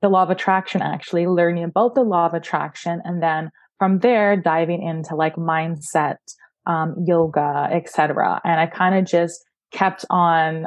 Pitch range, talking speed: 170-190 Hz, 170 wpm